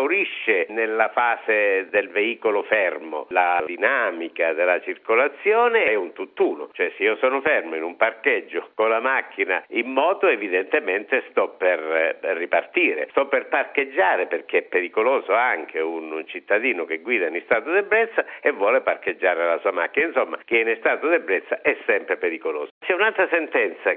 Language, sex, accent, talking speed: Italian, male, native, 155 wpm